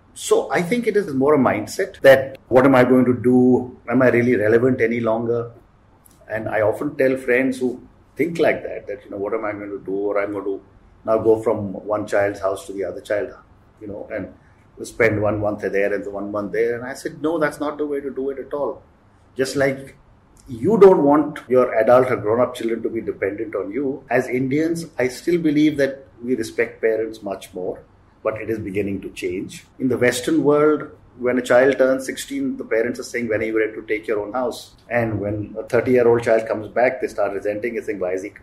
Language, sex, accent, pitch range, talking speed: English, male, Indian, 110-145 Hz, 230 wpm